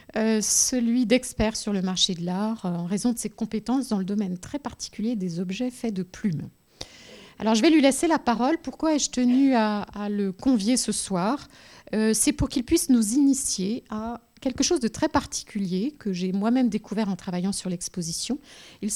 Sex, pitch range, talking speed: female, 190-245 Hz, 195 wpm